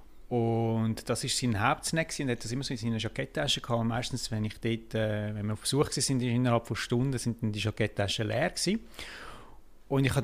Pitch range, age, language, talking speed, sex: 110-140 Hz, 30-49, German, 215 wpm, male